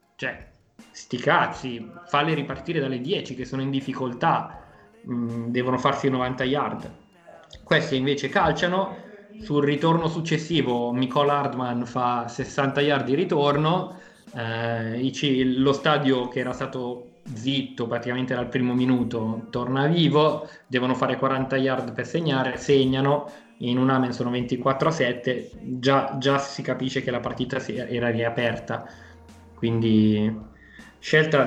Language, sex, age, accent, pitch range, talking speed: Italian, male, 20-39, native, 125-165 Hz, 130 wpm